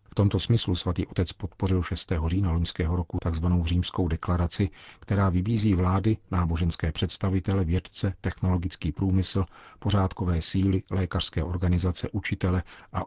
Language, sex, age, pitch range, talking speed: Czech, male, 40-59, 90-100 Hz, 125 wpm